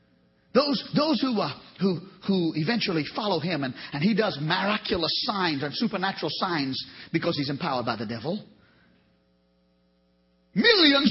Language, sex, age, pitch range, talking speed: English, male, 40-59, 145-205 Hz, 125 wpm